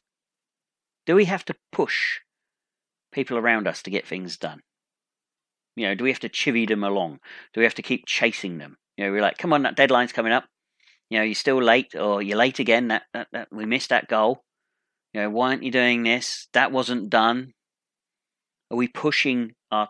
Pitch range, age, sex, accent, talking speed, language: 110-150 Hz, 40-59, male, British, 205 wpm, English